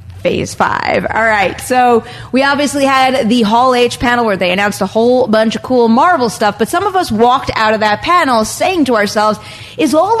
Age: 30-49